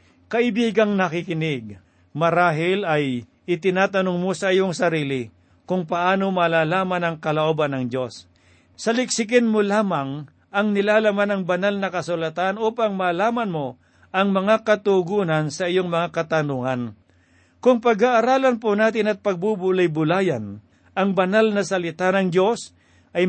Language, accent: Filipino, native